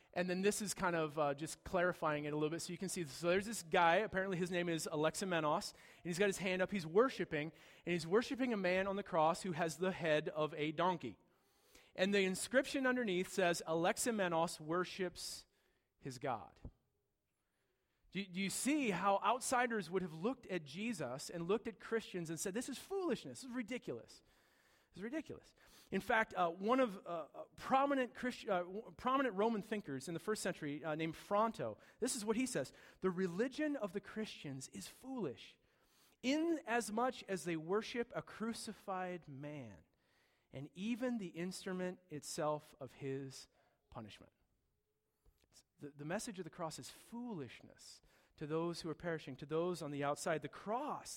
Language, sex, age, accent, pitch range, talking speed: English, male, 40-59, American, 160-225 Hz, 180 wpm